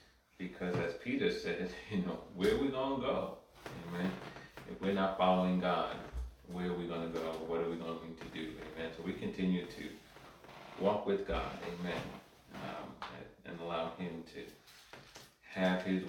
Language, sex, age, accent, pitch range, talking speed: English, male, 30-49, American, 80-95 Hz, 170 wpm